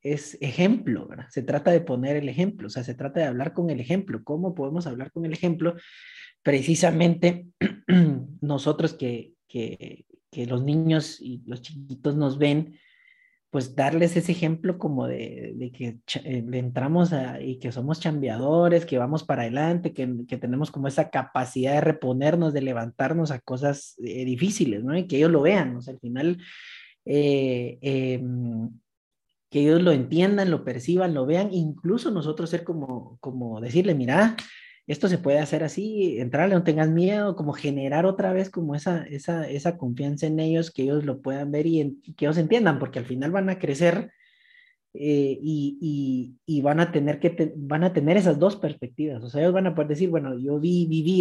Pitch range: 135-175 Hz